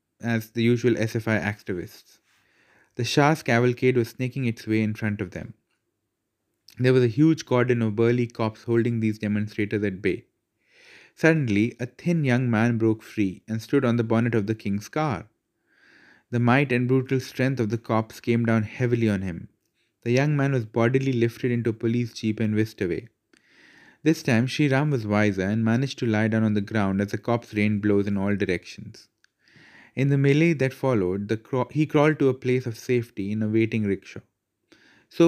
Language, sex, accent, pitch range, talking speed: English, male, Indian, 110-130 Hz, 190 wpm